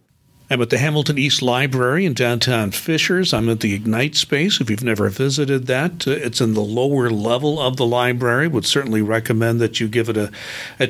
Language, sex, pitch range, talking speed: English, male, 120-150 Hz, 200 wpm